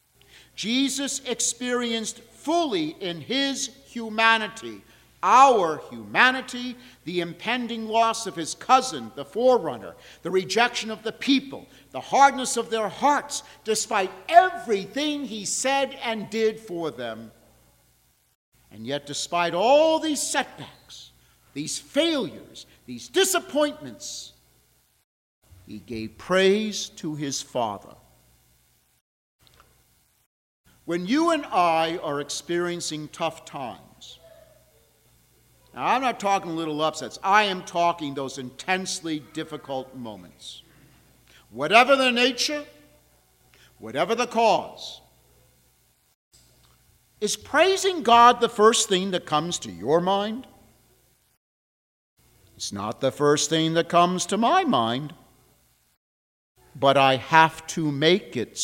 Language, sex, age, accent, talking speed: English, male, 50-69, American, 105 wpm